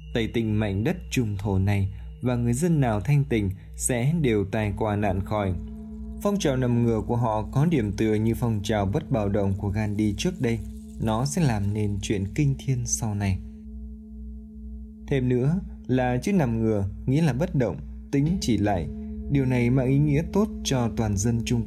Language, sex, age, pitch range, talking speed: Vietnamese, male, 20-39, 100-135 Hz, 195 wpm